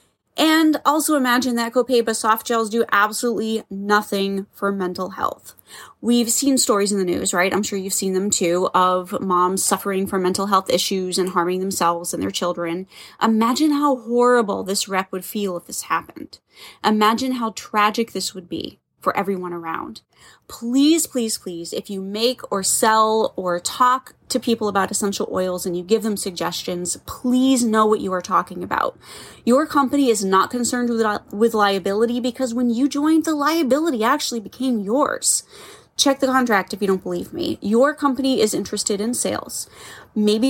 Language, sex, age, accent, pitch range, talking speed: English, female, 20-39, American, 190-250 Hz, 175 wpm